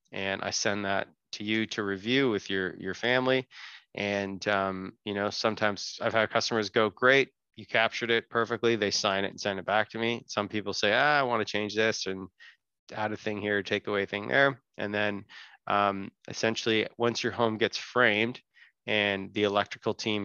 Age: 20-39